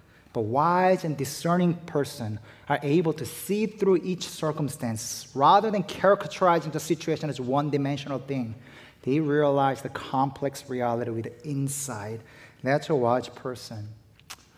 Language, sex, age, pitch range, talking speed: English, male, 30-49, 130-175 Hz, 130 wpm